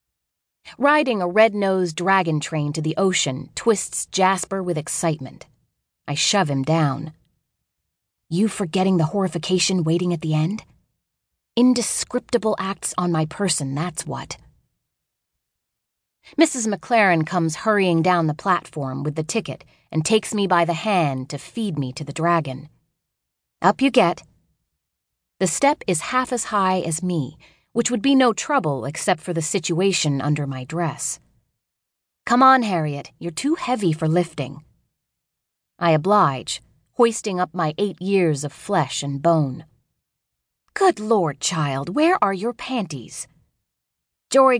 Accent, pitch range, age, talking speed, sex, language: American, 150-205 Hz, 30-49, 140 wpm, female, English